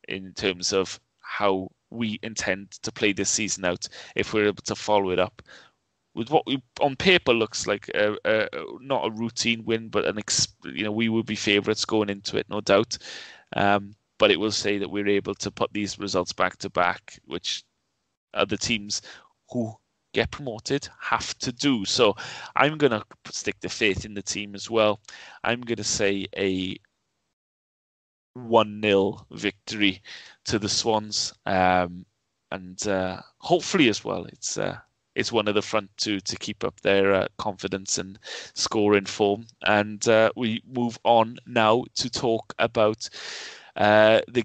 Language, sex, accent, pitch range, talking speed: English, male, British, 100-115 Hz, 170 wpm